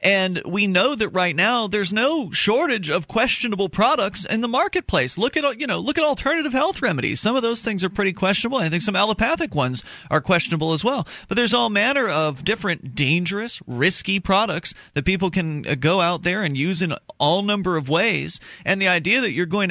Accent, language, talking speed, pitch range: American, English, 205 wpm, 130-195 Hz